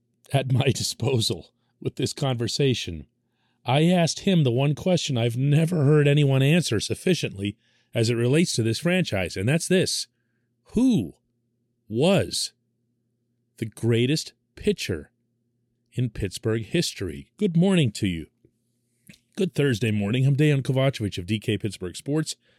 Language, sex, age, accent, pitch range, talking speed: English, male, 40-59, American, 105-140 Hz, 130 wpm